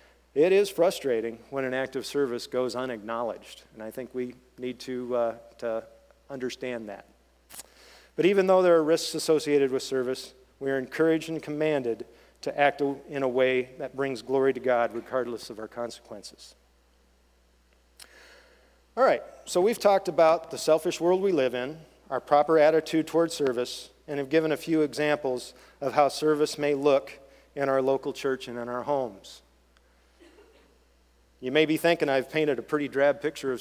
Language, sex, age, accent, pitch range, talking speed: English, male, 40-59, American, 120-155 Hz, 170 wpm